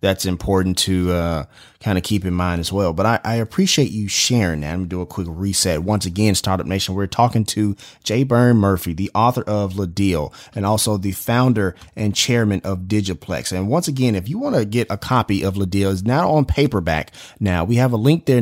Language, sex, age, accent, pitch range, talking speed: English, male, 30-49, American, 95-130 Hz, 225 wpm